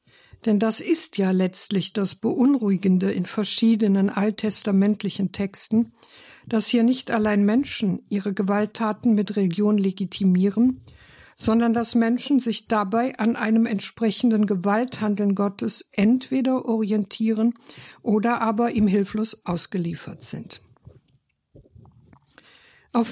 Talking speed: 105 wpm